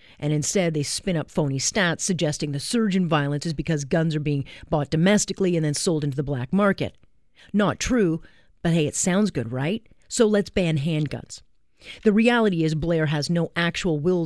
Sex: female